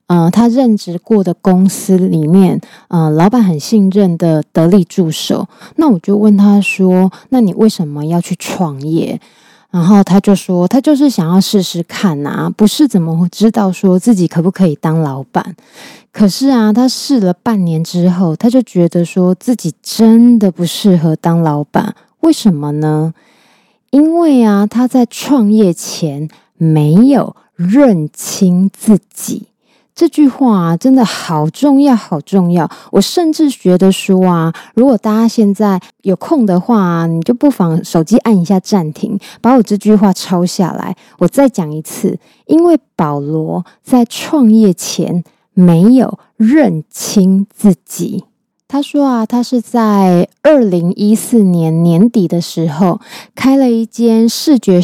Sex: female